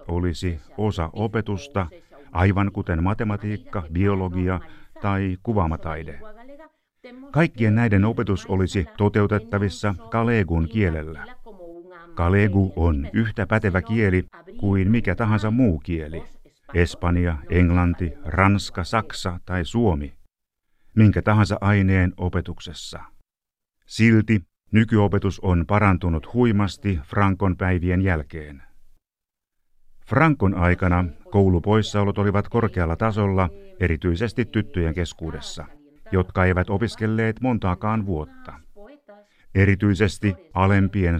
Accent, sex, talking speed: native, male, 85 wpm